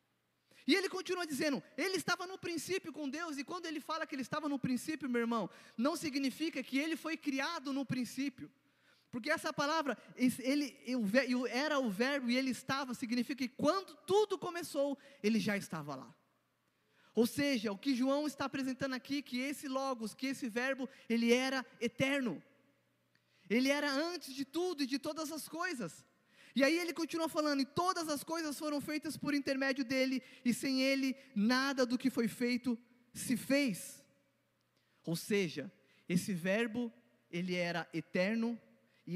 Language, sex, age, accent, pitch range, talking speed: Portuguese, male, 20-39, Brazilian, 230-290 Hz, 160 wpm